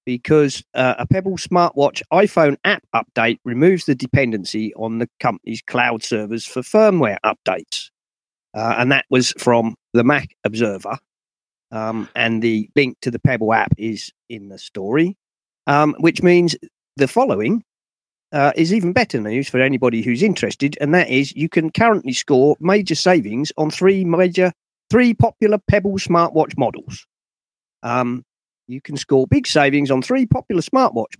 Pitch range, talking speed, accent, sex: 120-170 Hz, 155 wpm, British, male